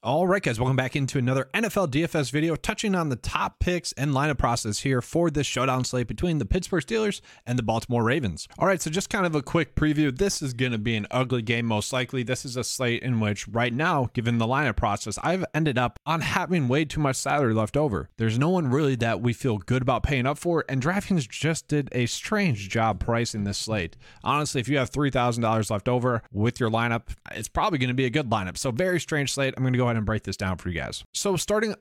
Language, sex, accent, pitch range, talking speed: English, male, American, 115-155 Hz, 250 wpm